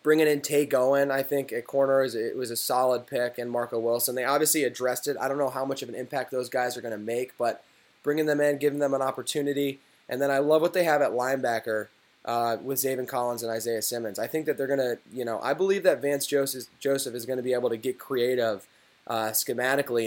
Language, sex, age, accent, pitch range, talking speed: English, male, 10-29, American, 120-140 Hz, 245 wpm